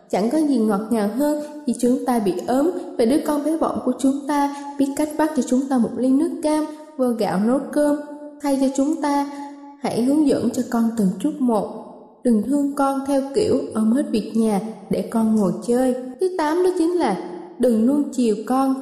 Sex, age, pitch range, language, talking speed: female, 10-29, 220-285 Hz, Vietnamese, 215 wpm